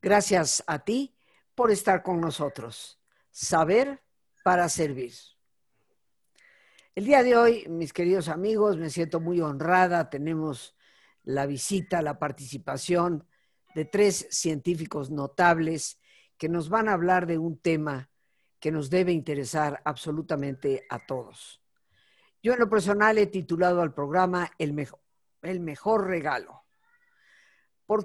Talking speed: 125 wpm